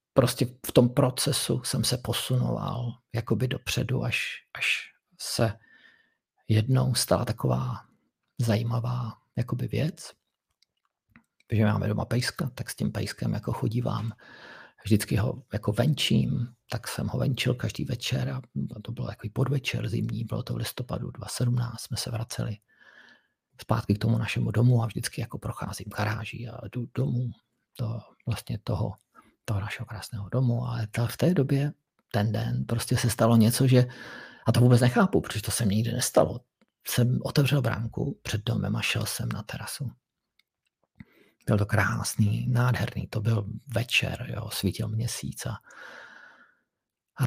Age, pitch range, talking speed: 50-69, 110-125 Hz, 150 wpm